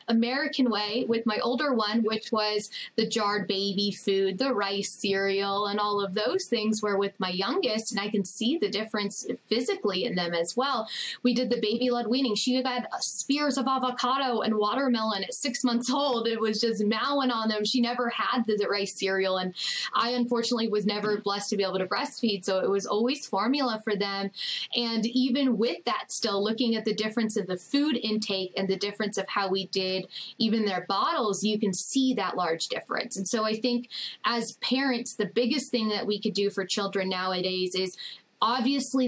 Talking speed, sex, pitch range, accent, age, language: 200 wpm, female, 200-245 Hz, American, 10-29, English